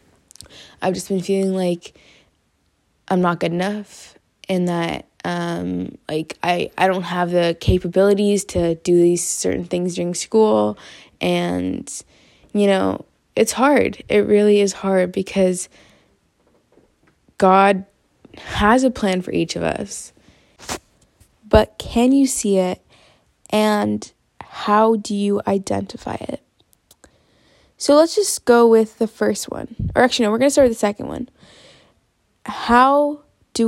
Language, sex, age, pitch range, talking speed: English, female, 20-39, 185-230 Hz, 135 wpm